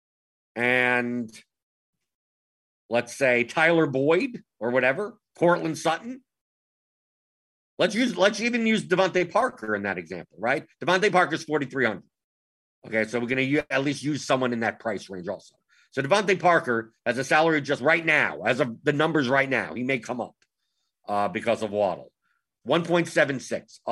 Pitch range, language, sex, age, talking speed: 115-160 Hz, English, male, 50-69, 155 wpm